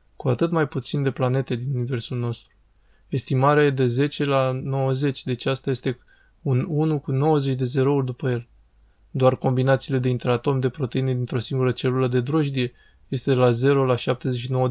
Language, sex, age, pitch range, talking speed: Romanian, male, 20-39, 125-140 Hz, 175 wpm